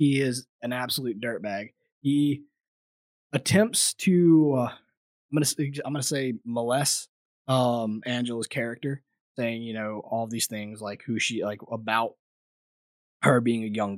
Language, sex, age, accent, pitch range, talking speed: English, male, 20-39, American, 110-130 Hz, 140 wpm